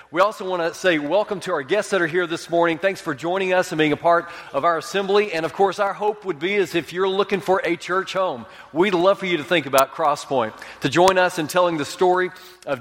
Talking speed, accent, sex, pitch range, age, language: 260 wpm, American, male, 140-185 Hz, 40-59, English